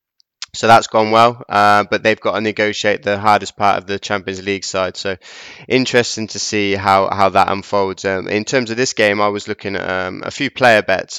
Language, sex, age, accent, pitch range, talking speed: English, male, 20-39, British, 100-110 Hz, 220 wpm